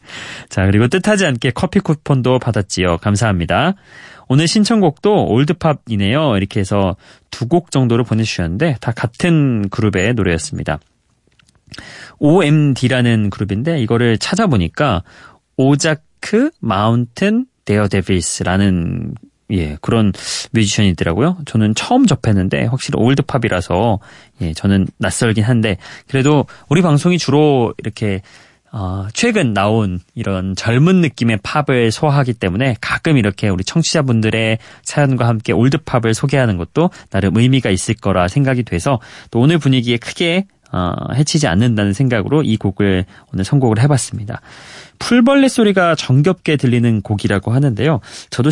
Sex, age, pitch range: male, 30-49, 100-150 Hz